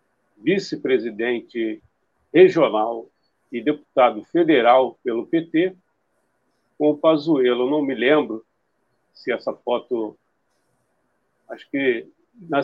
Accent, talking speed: Brazilian, 90 wpm